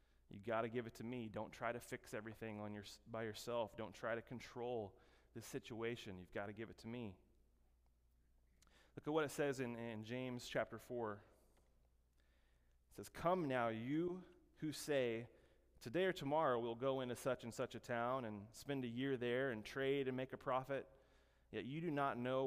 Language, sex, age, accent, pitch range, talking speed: English, male, 30-49, American, 100-130 Hz, 195 wpm